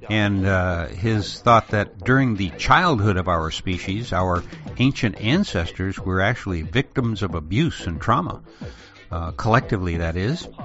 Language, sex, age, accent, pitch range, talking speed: English, male, 60-79, American, 95-120 Hz, 140 wpm